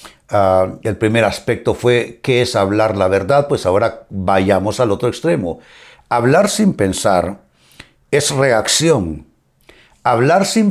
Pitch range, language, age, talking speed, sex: 115-165 Hz, Spanish, 60-79, 130 wpm, male